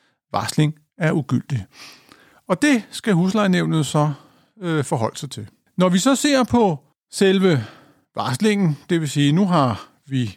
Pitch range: 150-210 Hz